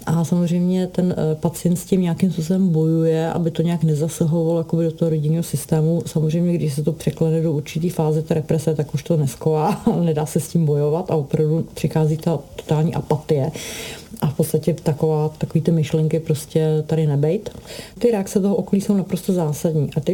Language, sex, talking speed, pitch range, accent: Czech, female, 180 wpm, 155-180 Hz, native